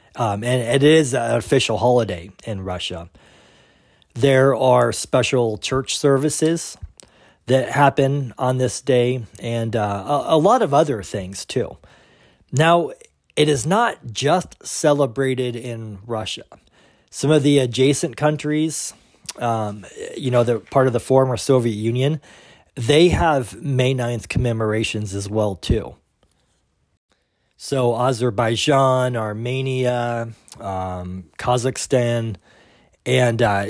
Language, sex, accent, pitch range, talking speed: English, male, American, 110-140 Hz, 115 wpm